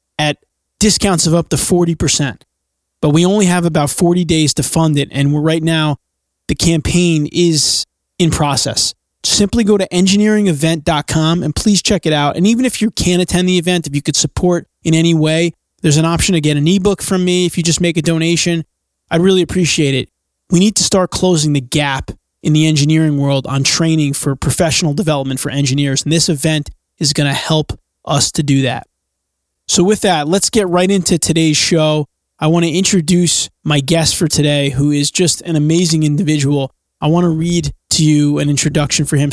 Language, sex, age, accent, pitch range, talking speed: English, male, 20-39, American, 145-180 Hz, 200 wpm